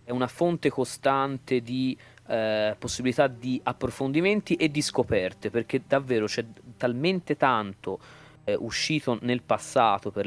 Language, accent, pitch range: Italian, native, 105-130 Hz